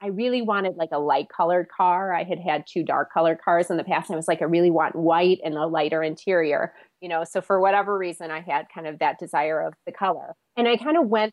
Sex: female